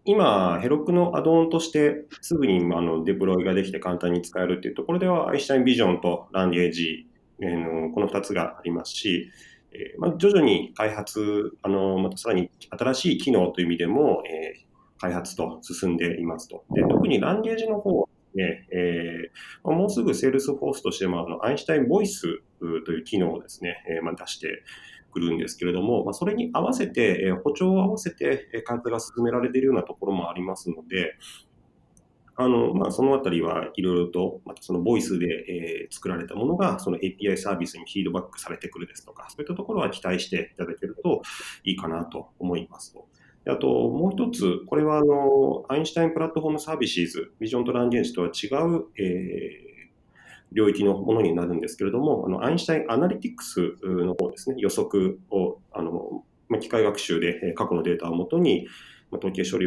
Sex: male